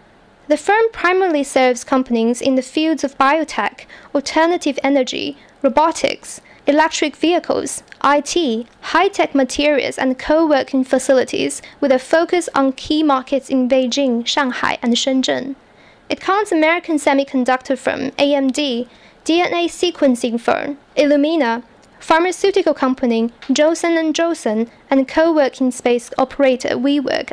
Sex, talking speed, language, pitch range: female, 115 wpm, English, 260-310 Hz